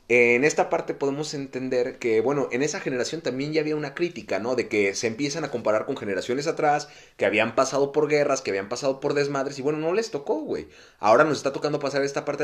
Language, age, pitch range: Spanish, 30-49, 125-155 Hz